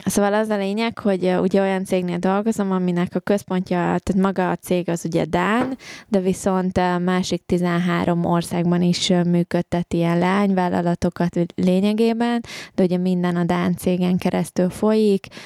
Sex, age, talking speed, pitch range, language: female, 20-39, 150 wpm, 170-190 Hz, Hungarian